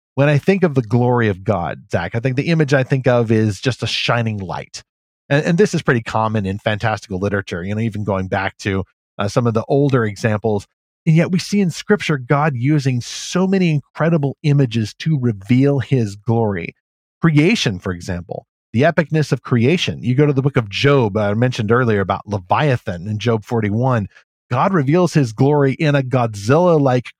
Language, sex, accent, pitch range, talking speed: English, male, American, 110-140 Hz, 195 wpm